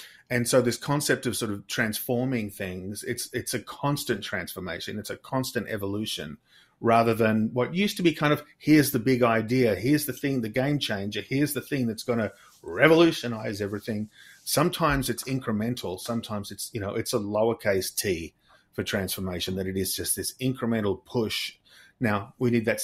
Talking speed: 180 wpm